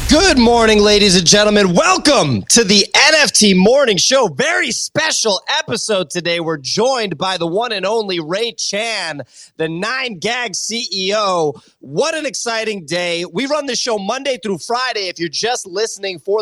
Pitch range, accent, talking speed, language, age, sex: 170-220 Hz, American, 160 wpm, English, 30-49, male